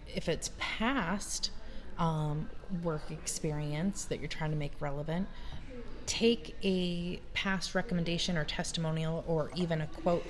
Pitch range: 155-175 Hz